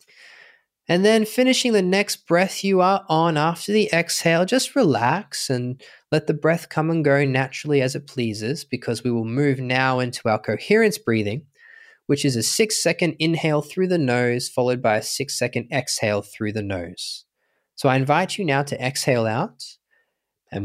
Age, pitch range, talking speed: 20-39, 115-180 Hz, 170 wpm